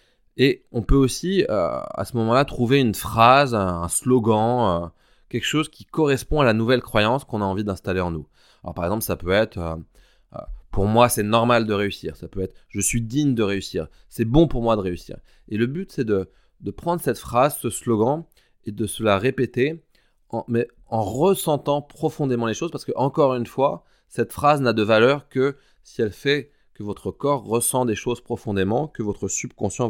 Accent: French